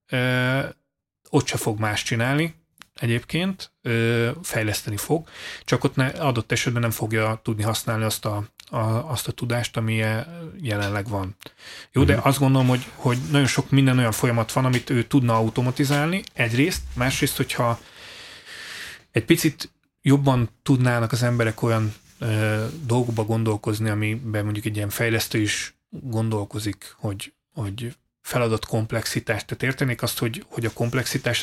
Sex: male